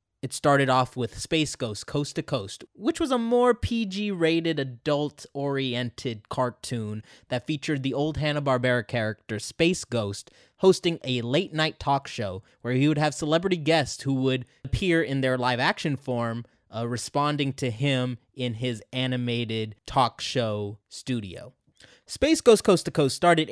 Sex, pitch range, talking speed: male, 120-155 Hz, 160 wpm